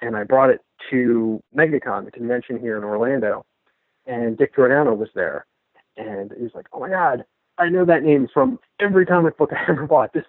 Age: 40-59